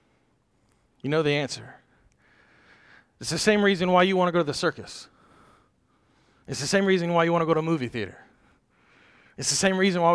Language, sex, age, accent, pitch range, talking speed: English, male, 30-49, American, 165-215 Hz, 200 wpm